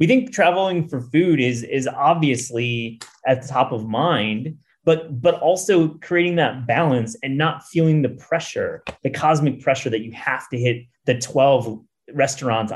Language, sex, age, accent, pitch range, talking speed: English, male, 30-49, American, 115-155 Hz, 165 wpm